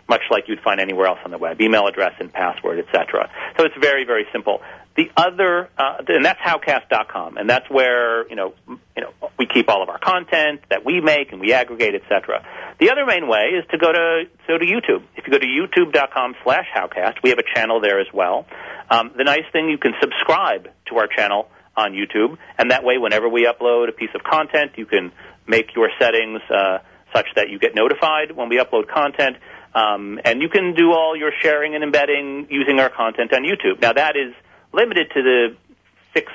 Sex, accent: male, American